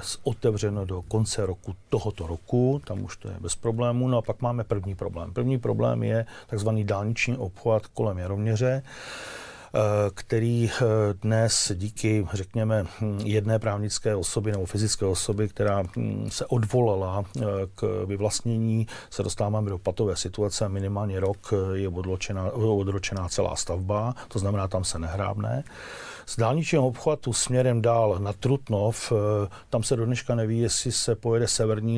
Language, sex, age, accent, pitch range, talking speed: Czech, male, 40-59, native, 100-115 Hz, 135 wpm